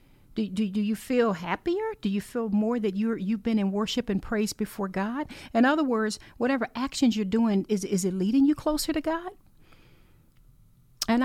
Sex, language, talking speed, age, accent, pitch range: female, English, 190 wpm, 40-59, American, 195-250 Hz